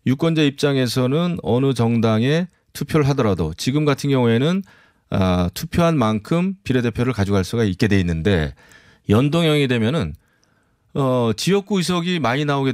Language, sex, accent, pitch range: Korean, male, native, 100-145 Hz